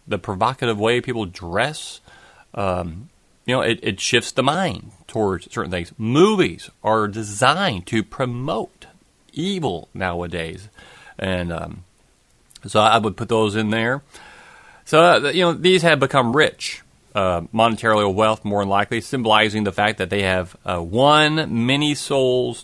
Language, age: English, 30-49